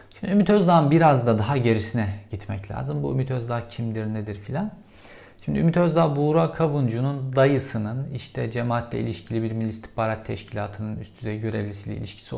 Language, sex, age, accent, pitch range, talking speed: Turkish, male, 50-69, native, 110-145 Hz, 150 wpm